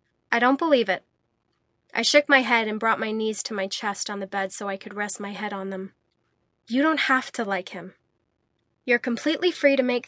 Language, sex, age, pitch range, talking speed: English, female, 20-39, 210-270 Hz, 220 wpm